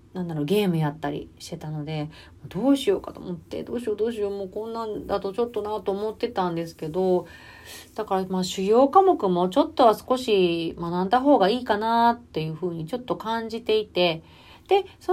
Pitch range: 175-235 Hz